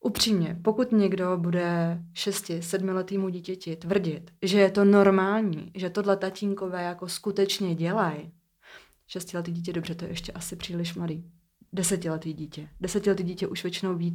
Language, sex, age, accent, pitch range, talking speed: Czech, female, 30-49, native, 170-200 Hz, 150 wpm